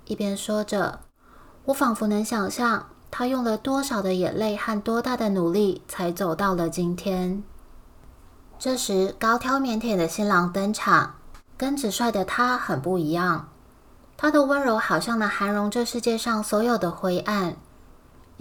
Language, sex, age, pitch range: Chinese, female, 20-39, 185-235 Hz